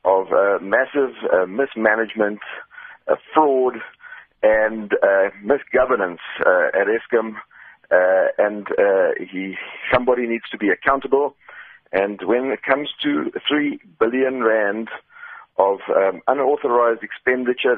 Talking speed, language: 115 wpm, English